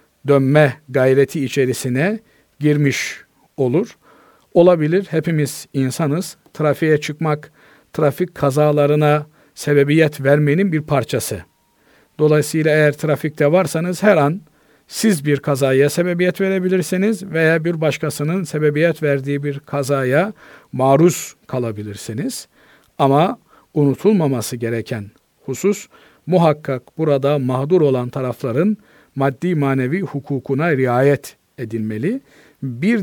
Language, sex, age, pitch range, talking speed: Turkish, male, 50-69, 135-175 Hz, 95 wpm